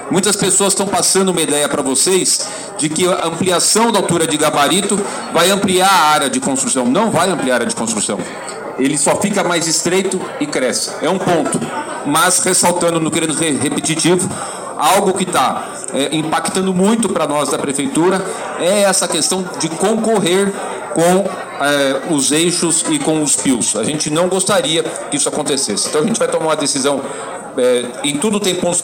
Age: 40-59